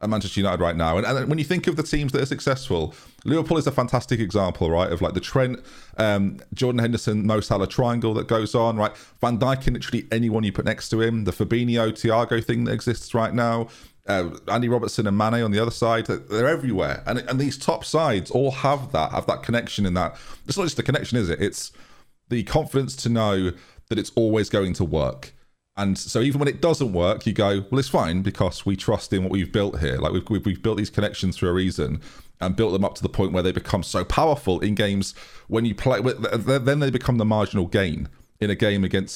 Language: English